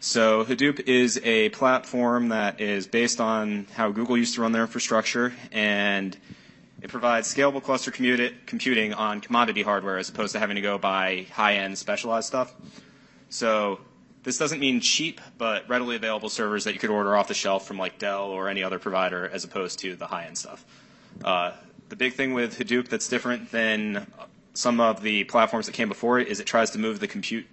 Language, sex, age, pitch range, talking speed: English, male, 20-39, 105-125 Hz, 190 wpm